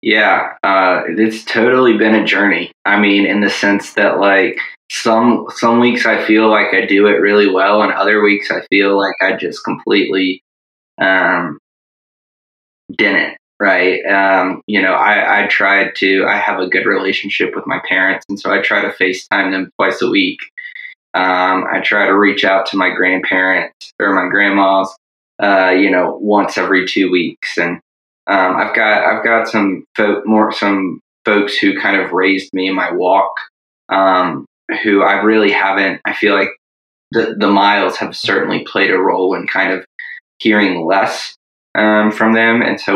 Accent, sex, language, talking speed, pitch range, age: American, male, English, 175 wpm, 95-105 Hz, 20-39